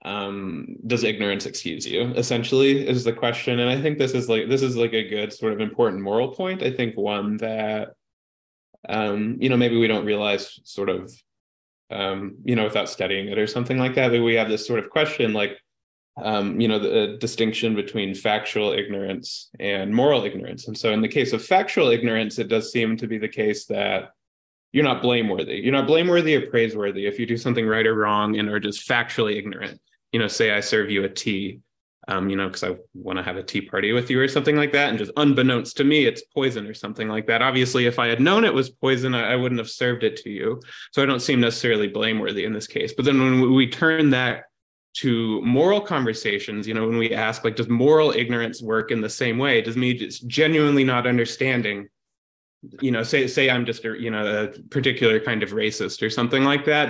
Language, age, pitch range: English, 20-39, 105-130 Hz